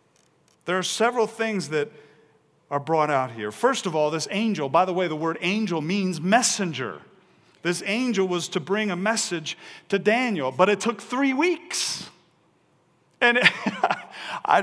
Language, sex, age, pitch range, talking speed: English, male, 40-59, 185-240 Hz, 155 wpm